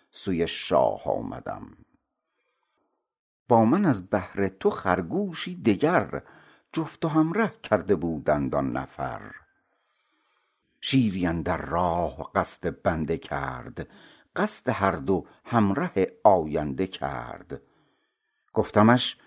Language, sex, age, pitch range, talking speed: Persian, male, 60-79, 95-135 Hz, 95 wpm